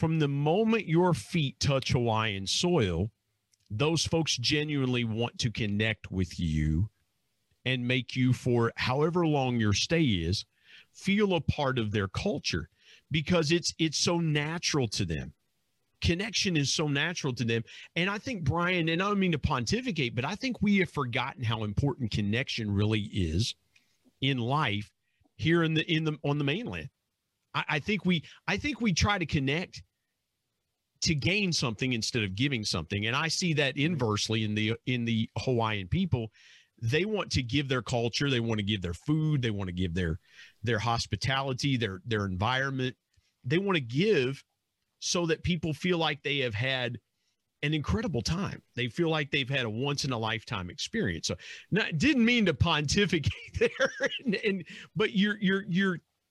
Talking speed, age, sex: 175 wpm, 40-59, male